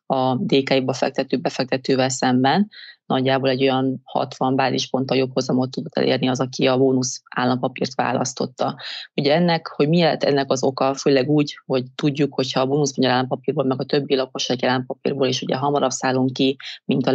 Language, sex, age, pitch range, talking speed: Hungarian, female, 30-49, 130-140 Hz, 170 wpm